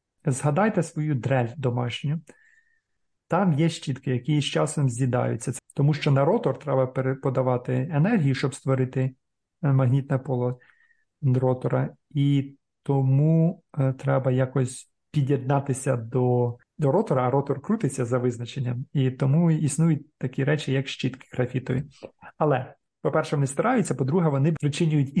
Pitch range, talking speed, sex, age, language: 130-155 Hz, 120 wpm, male, 40-59, Ukrainian